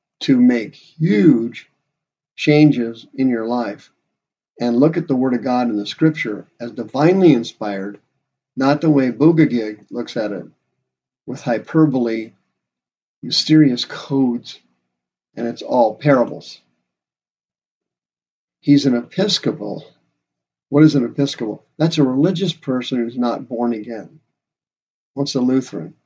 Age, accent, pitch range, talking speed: 50-69, American, 115-145 Hz, 120 wpm